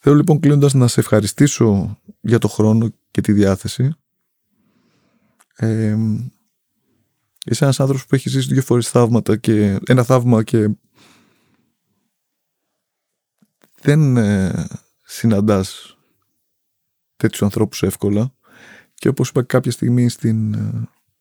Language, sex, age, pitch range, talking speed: Greek, male, 30-49, 110-135 Hz, 95 wpm